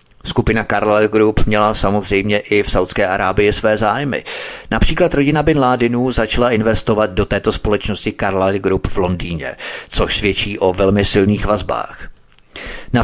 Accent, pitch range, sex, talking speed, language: native, 100-120 Hz, male, 145 wpm, Czech